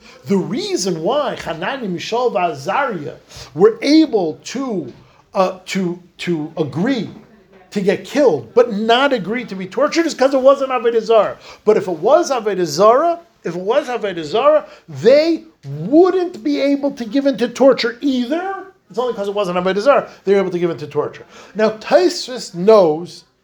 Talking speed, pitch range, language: 165 wpm, 175-270 Hz, English